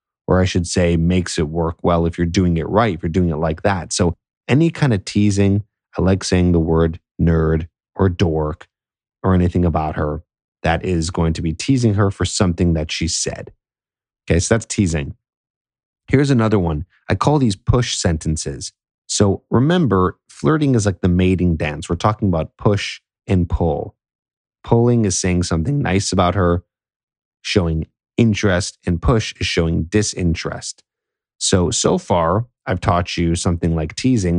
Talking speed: 170 wpm